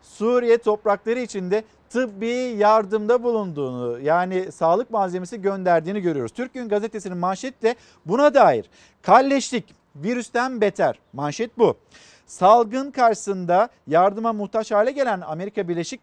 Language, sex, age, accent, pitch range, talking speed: Turkish, male, 50-69, native, 185-230 Hz, 110 wpm